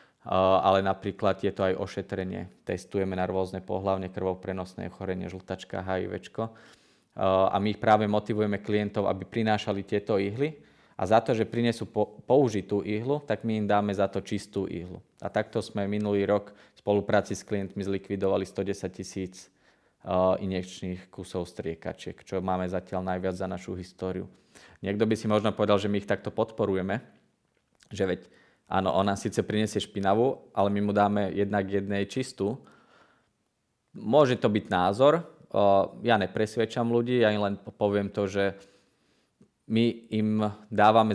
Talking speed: 155 wpm